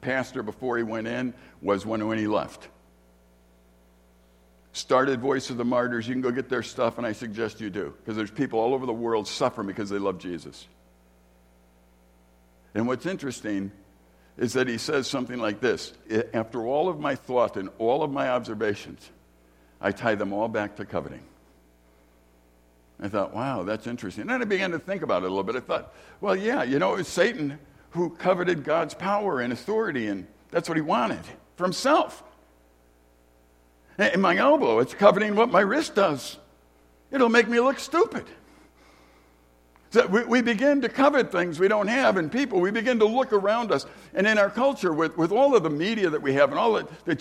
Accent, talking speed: American, 190 wpm